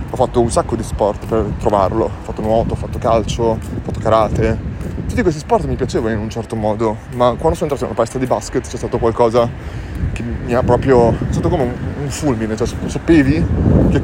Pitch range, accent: 110-135 Hz, native